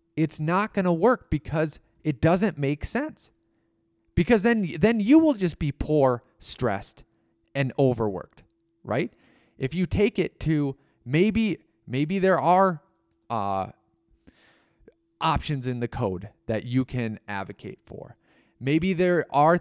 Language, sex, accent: English, male, American